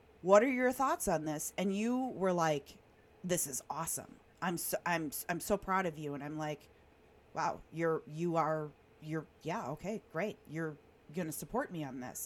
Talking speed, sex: 190 wpm, female